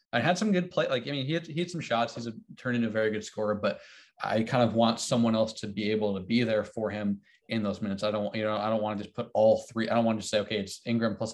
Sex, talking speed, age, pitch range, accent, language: male, 330 wpm, 20-39, 110-130 Hz, American, English